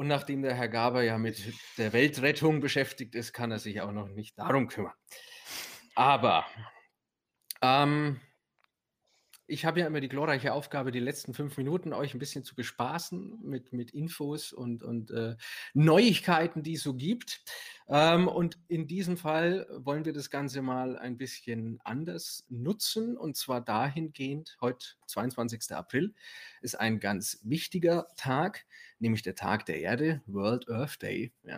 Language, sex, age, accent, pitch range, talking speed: German, male, 30-49, German, 120-155 Hz, 150 wpm